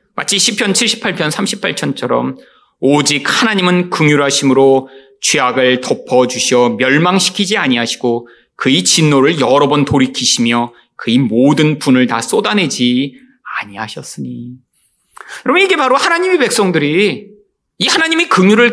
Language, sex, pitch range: Korean, male, 145-235 Hz